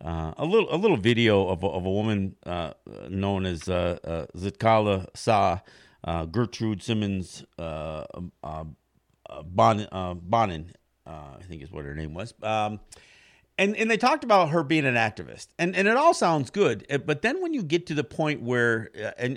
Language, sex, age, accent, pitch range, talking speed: English, male, 50-69, American, 110-160 Hz, 195 wpm